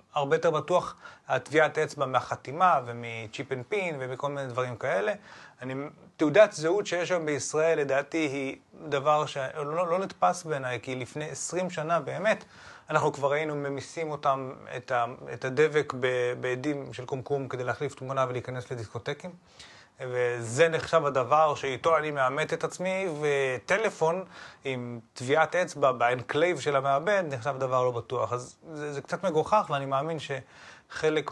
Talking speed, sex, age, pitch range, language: 140 wpm, male, 30-49, 130-160 Hz, Hebrew